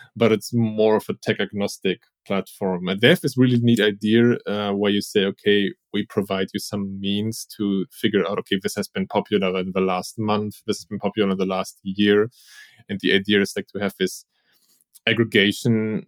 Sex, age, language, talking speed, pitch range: male, 20-39, English, 200 wpm, 95-110 Hz